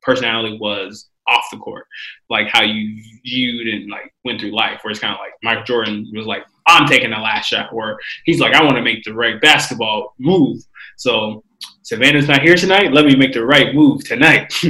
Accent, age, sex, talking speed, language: American, 20-39, male, 210 wpm, English